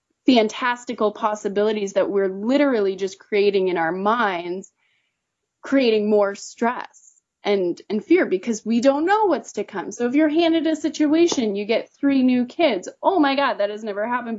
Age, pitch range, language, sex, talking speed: 20-39, 200-275 Hz, English, female, 170 wpm